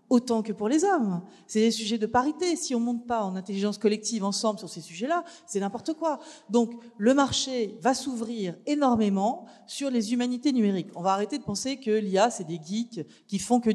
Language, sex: French, female